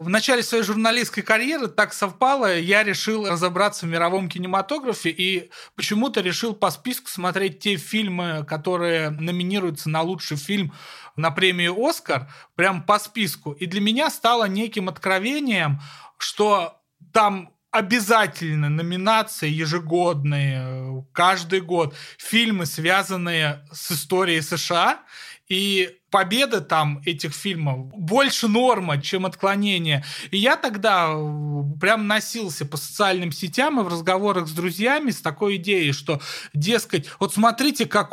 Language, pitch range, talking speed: Russian, 170-215 Hz, 125 wpm